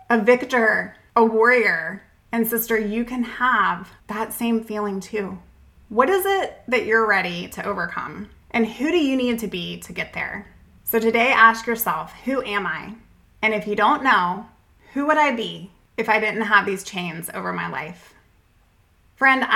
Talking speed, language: 175 wpm, English